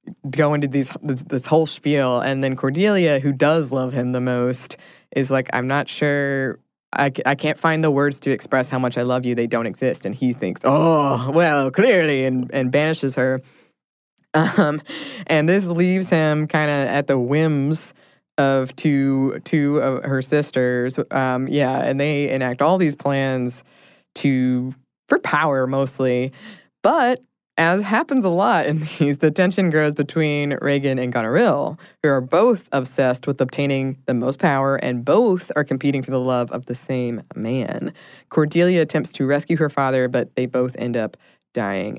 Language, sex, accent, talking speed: English, female, American, 175 wpm